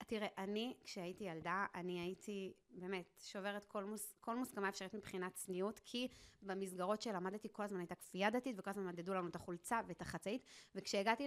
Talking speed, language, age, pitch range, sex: 170 wpm, Hebrew, 20-39, 195-255 Hz, female